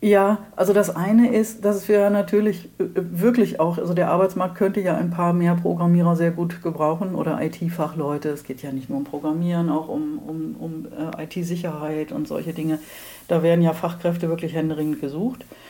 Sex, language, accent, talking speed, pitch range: female, German, German, 180 wpm, 155-200 Hz